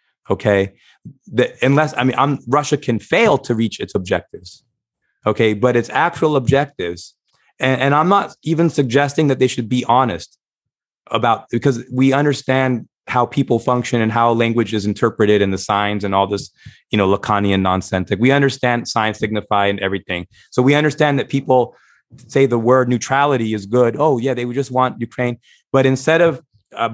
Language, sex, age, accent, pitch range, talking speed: English, male, 30-49, American, 110-135 Hz, 175 wpm